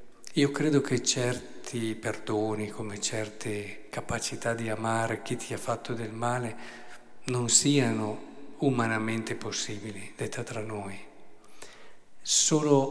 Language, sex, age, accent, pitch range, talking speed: Italian, male, 50-69, native, 120-140 Hz, 110 wpm